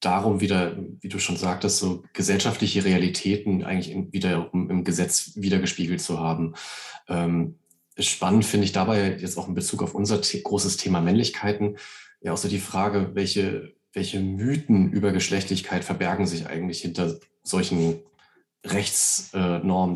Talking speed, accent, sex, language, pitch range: 145 wpm, German, male, German, 95-105 Hz